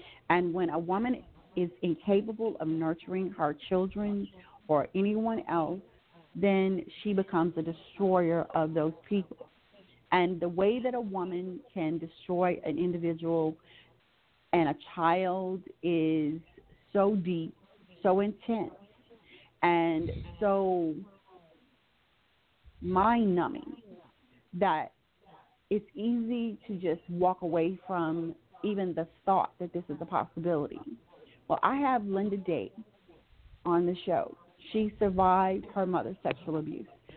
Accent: American